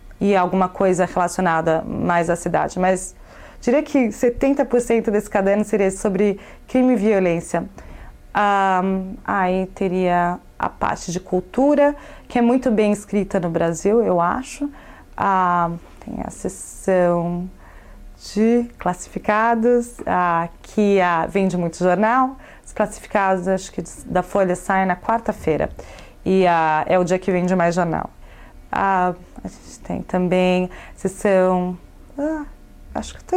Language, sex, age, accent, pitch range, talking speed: English, female, 20-39, Brazilian, 180-220 Hz, 135 wpm